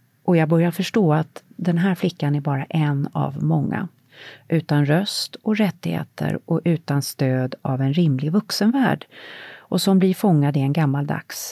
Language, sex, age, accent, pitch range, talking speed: English, female, 40-59, Swedish, 135-185 Hz, 160 wpm